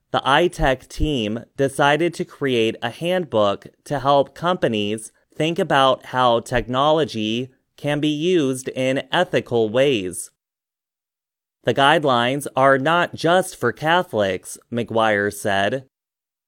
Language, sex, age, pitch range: Chinese, male, 30-49, 120-150 Hz